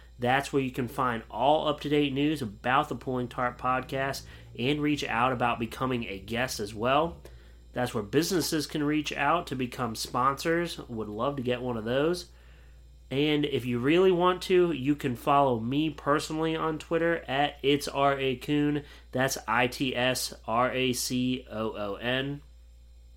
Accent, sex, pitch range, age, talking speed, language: American, male, 115-145 Hz, 30-49, 150 wpm, English